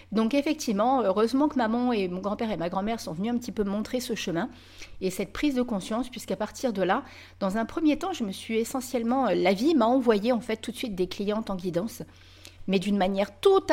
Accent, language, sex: French, French, female